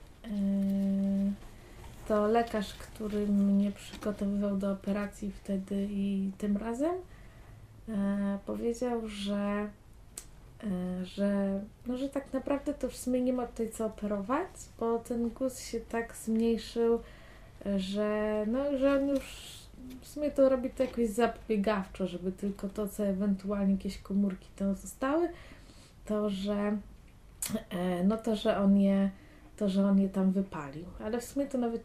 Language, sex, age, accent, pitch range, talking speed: Polish, female, 20-39, native, 190-220 Hz, 135 wpm